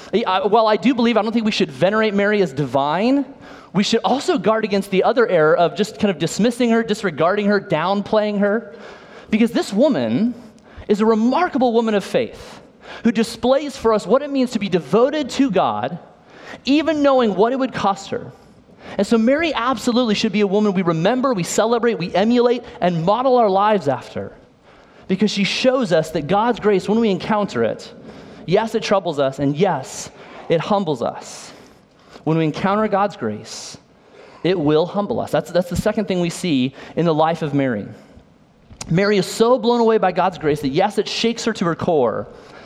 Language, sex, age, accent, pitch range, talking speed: English, male, 30-49, American, 180-230 Hz, 190 wpm